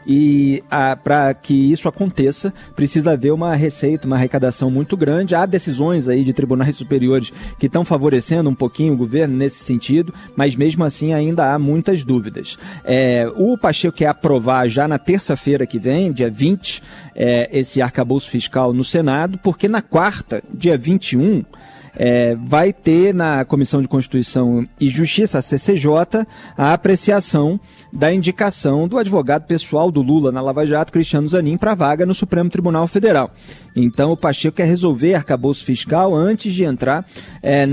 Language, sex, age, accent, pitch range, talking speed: Portuguese, male, 40-59, Brazilian, 135-170 Hz, 155 wpm